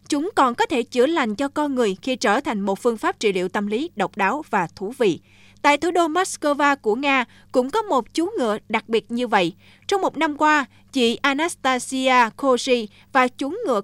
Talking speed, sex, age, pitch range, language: 210 wpm, female, 20-39, 220-285 Hz, Vietnamese